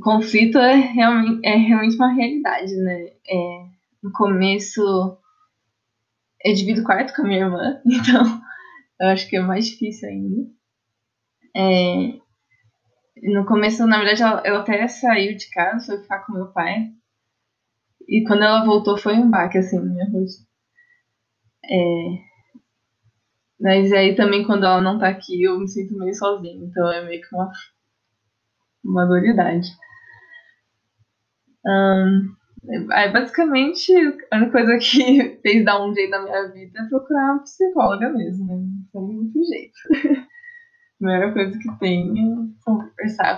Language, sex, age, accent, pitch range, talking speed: Portuguese, female, 10-29, Brazilian, 185-230 Hz, 140 wpm